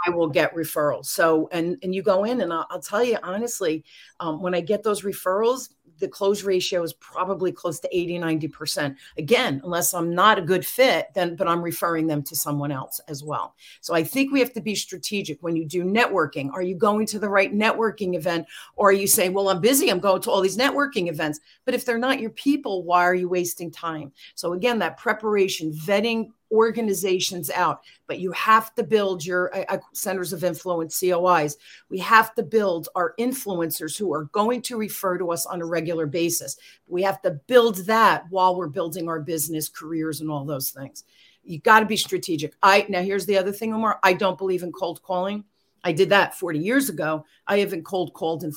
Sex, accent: female, American